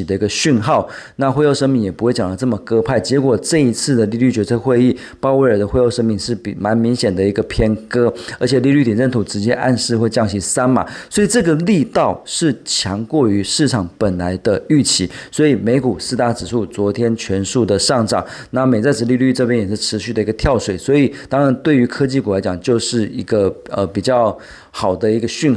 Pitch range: 105-130 Hz